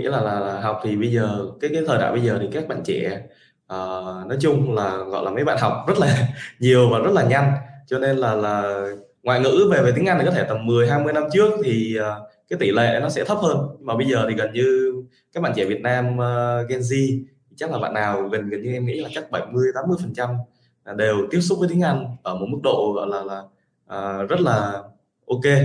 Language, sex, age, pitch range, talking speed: Vietnamese, male, 20-39, 110-150 Hz, 250 wpm